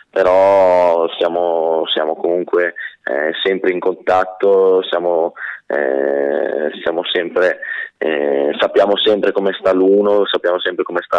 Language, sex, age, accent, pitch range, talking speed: Italian, male, 20-39, native, 85-105 Hz, 120 wpm